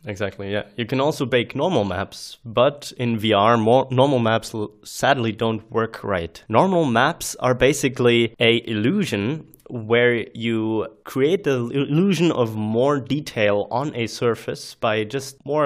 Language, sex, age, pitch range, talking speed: English, male, 20-39, 105-125 Hz, 145 wpm